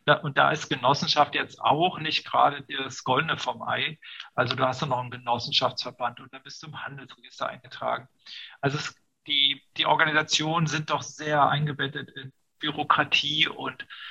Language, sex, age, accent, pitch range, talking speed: German, male, 40-59, German, 130-150 Hz, 155 wpm